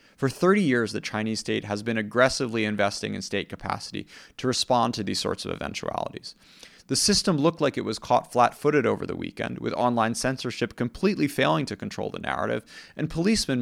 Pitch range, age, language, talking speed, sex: 110-140 Hz, 30-49, English, 185 wpm, male